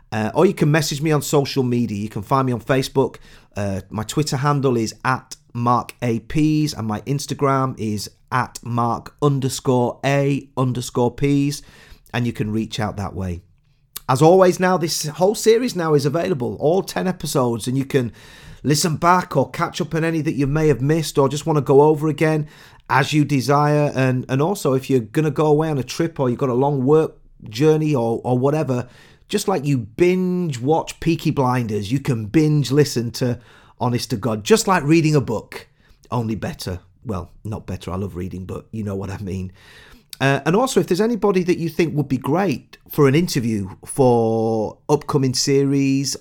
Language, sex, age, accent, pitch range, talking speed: English, male, 40-59, British, 120-155 Hz, 195 wpm